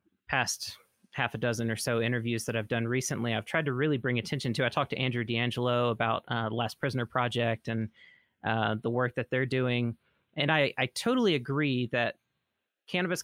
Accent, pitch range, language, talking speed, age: American, 115-140 Hz, English, 195 wpm, 30-49